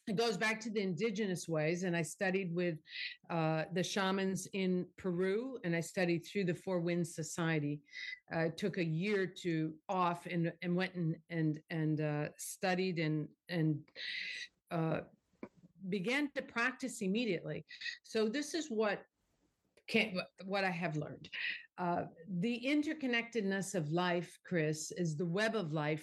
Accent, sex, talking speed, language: American, female, 150 wpm, English